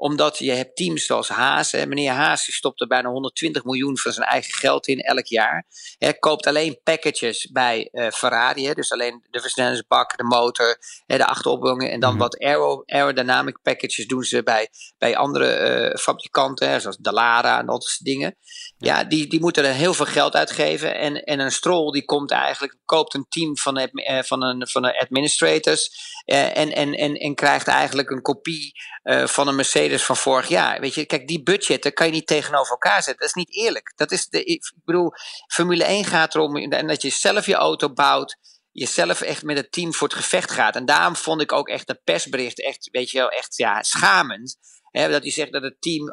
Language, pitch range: Dutch, 135-165 Hz